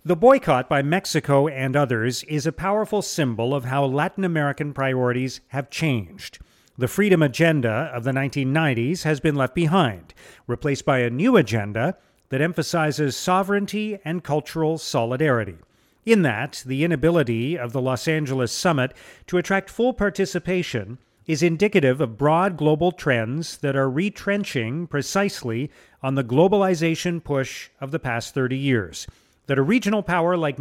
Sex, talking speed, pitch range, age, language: male, 145 wpm, 130-180 Hz, 40-59, English